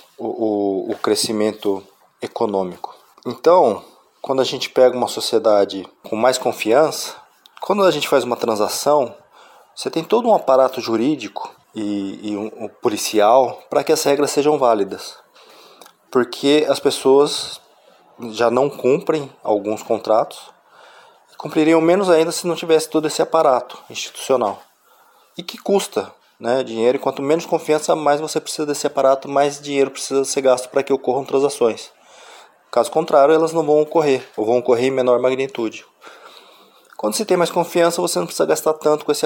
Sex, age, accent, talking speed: male, 20-39, Brazilian, 155 wpm